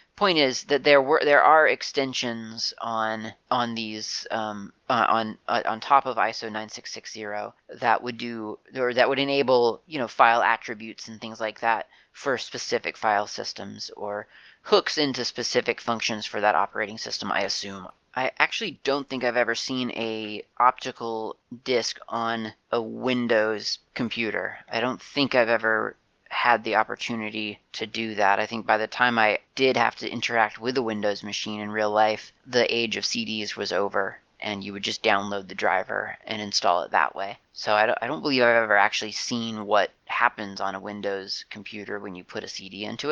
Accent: American